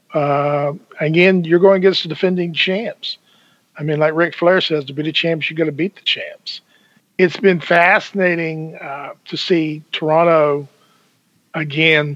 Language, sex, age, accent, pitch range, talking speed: English, male, 50-69, American, 150-180 Hz, 160 wpm